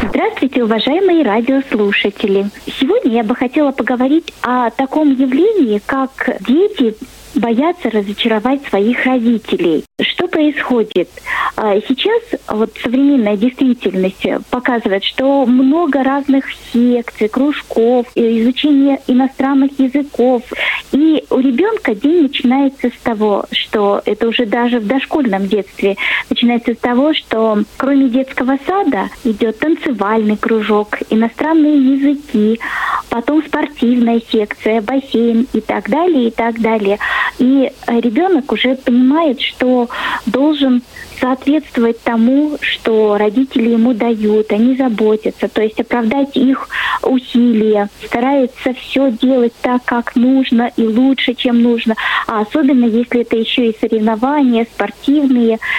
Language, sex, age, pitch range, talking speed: Russian, female, 20-39, 225-270 Hz, 115 wpm